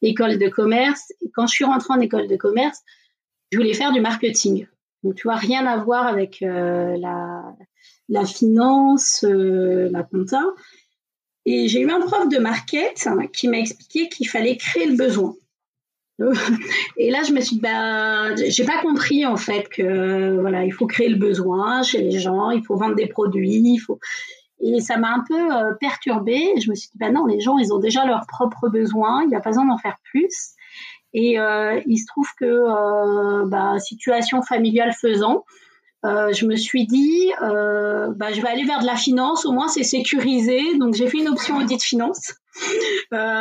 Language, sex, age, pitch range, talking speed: French, female, 30-49, 215-270 Hz, 195 wpm